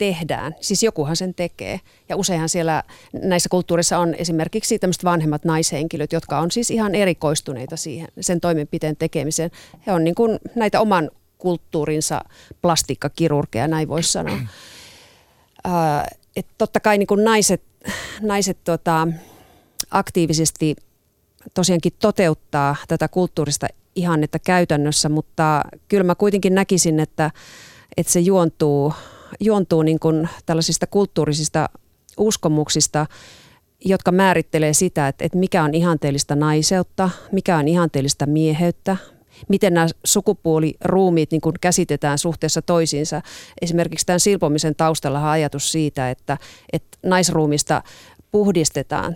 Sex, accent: female, native